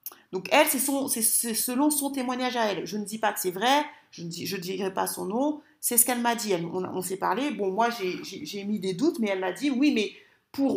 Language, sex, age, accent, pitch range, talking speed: French, female, 40-59, French, 205-265 Hz, 285 wpm